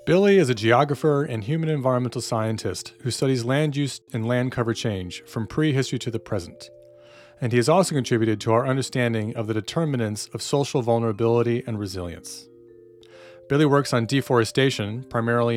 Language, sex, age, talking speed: English, male, 40-59, 160 wpm